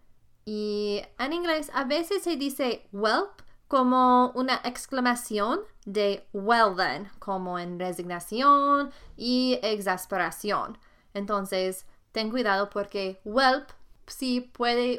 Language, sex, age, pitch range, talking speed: Spanish, female, 20-39, 195-250 Hz, 105 wpm